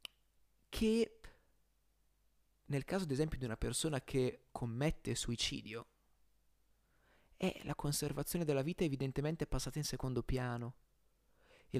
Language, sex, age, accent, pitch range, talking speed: Italian, male, 30-49, native, 120-150 Hz, 110 wpm